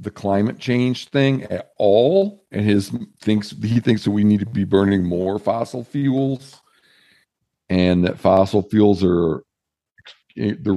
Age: 50-69